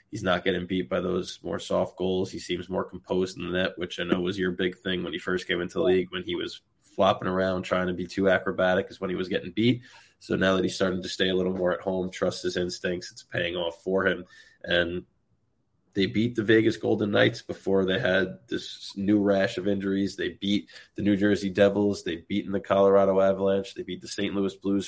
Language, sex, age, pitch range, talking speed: English, male, 20-39, 90-100 Hz, 235 wpm